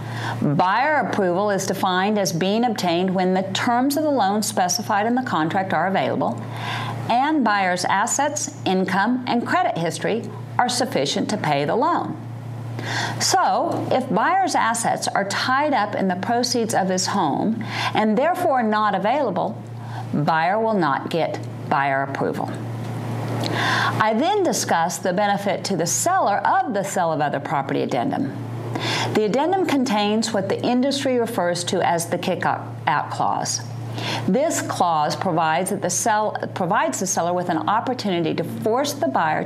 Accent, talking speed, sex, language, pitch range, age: American, 145 wpm, female, English, 155-225 Hz, 50-69